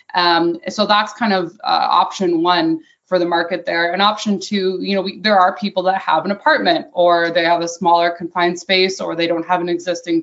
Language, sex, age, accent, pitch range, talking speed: English, female, 20-39, American, 170-190 Hz, 225 wpm